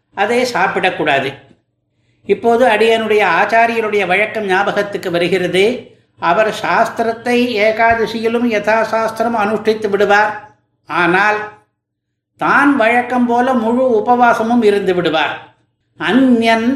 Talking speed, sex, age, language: 80 wpm, male, 60-79, Tamil